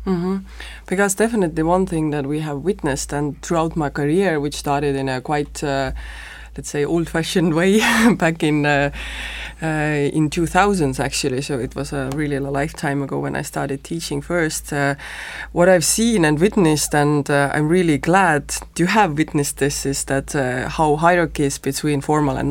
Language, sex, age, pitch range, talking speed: English, female, 20-39, 140-170 Hz, 170 wpm